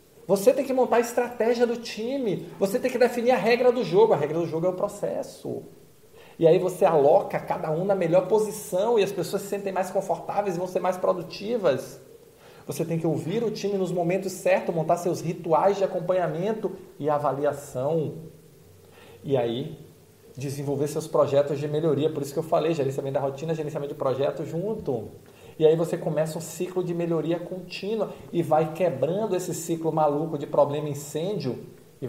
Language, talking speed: Portuguese, 185 wpm